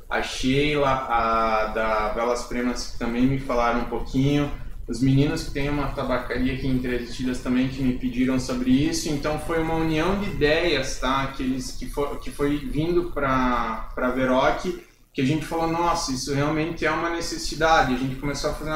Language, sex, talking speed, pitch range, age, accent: Portuguese, male, 190 wpm, 130-160 Hz, 20-39, Brazilian